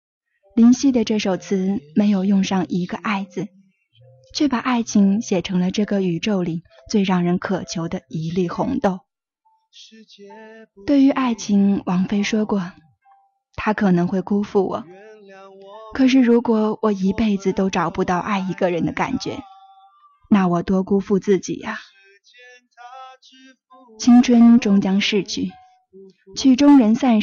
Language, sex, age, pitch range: Chinese, female, 20-39, 180-230 Hz